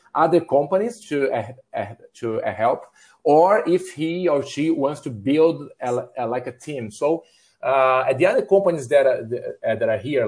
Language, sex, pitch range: English, male, 125-175 Hz